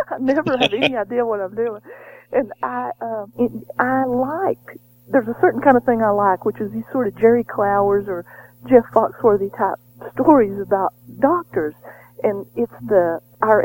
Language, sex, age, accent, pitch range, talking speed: English, female, 50-69, American, 205-245 Hz, 175 wpm